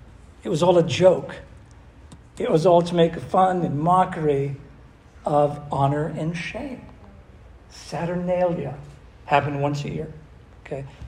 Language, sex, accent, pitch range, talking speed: English, male, American, 135-170 Hz, 125 wpm